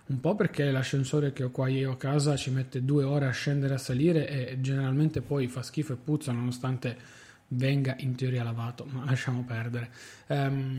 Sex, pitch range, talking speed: male, 130-155 Hz, 195 wpm